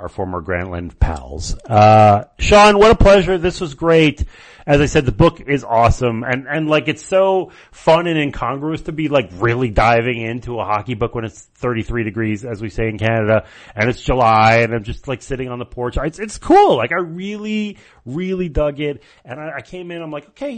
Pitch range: 115-155 Hz